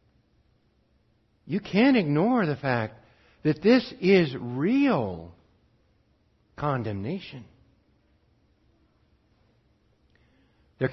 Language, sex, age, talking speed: English, male, 60-79, 60 wpm